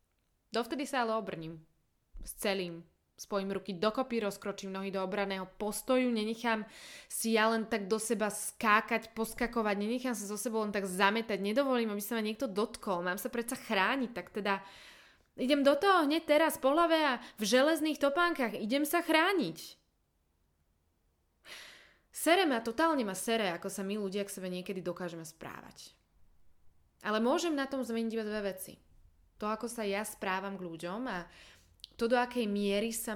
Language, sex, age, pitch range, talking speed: Slovak, female, 20-39, 185-230 Hz, 165 wpm